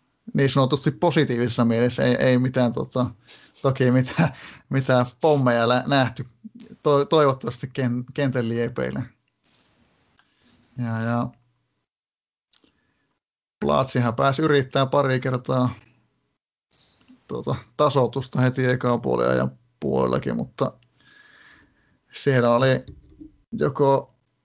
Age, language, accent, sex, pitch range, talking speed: 30-49, Finnish, native, male, 120-140 Hz, 85 wpm